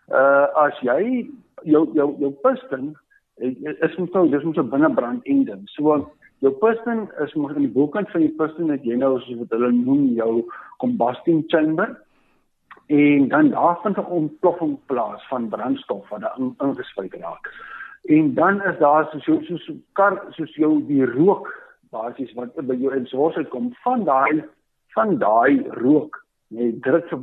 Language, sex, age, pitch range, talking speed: Dutch, male, 60-79, 135-215 Hz, 150 wpm